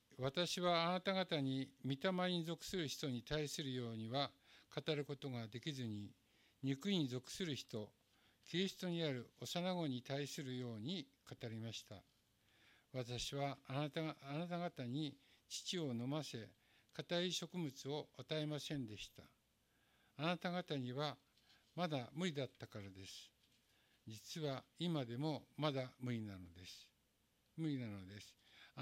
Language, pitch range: Japanese, 115-155 Hz